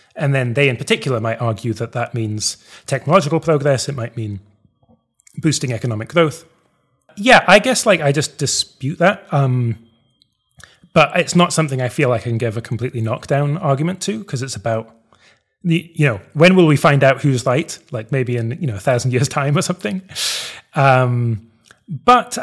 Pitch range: 120-145 Hz